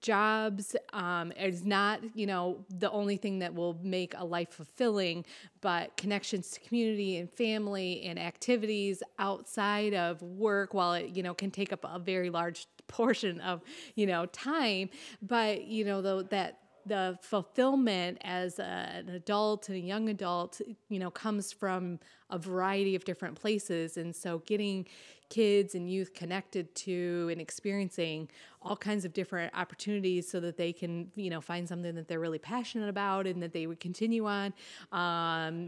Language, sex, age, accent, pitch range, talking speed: English, female, 30-49, American, 180-210 Hz, 170 wpm